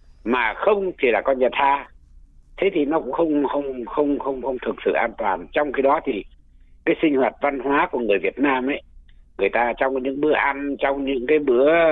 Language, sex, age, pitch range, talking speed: Vietnamese, male, 60-79, 125-180 Hz, 220 wpm